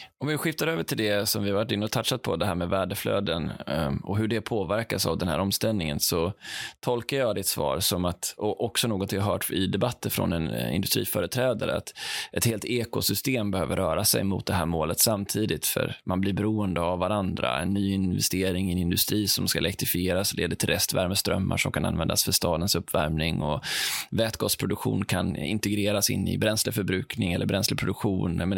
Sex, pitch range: male, 95-115 Hz